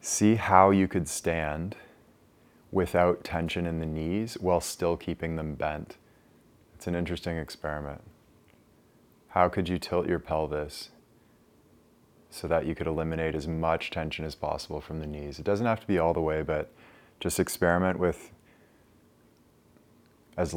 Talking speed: 150 wpm